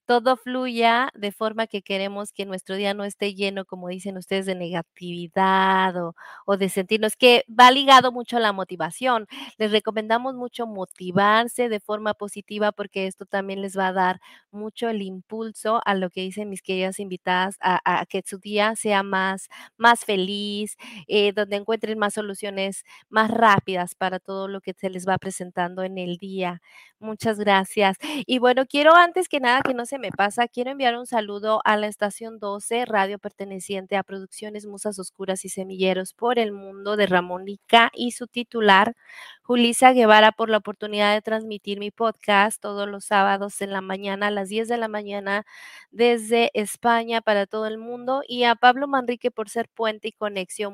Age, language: 30-49, English